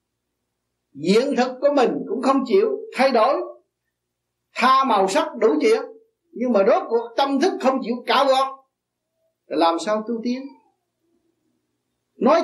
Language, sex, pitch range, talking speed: Vietnamese, male, 210-310 Hz, 140 wpm